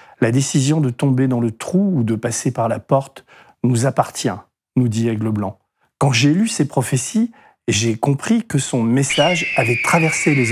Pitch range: 115-145 Hz